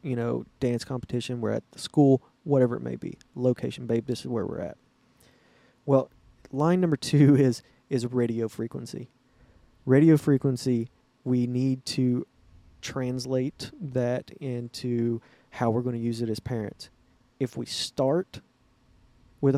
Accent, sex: American, male